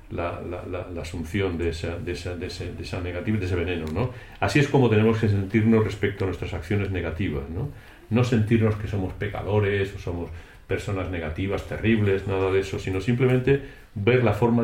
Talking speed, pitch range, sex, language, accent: 200 wpm, 90-110 Hz, male, Italian, Spanish